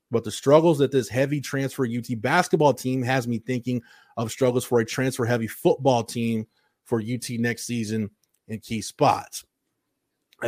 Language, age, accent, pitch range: English, 30-49, American, 115-140 Hz